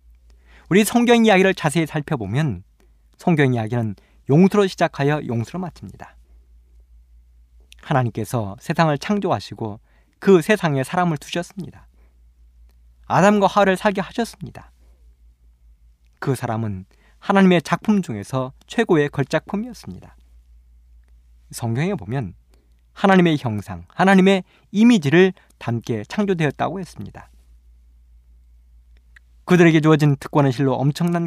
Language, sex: Korean, male